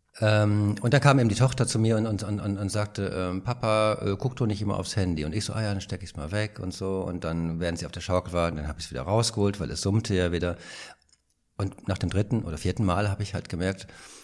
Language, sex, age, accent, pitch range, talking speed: German, male, 50-69, German, 90-115 Hz, 280 wpm